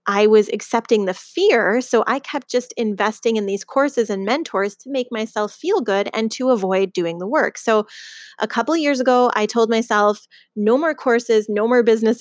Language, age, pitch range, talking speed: English, 20-39, 205-260 Hz, 200 wpm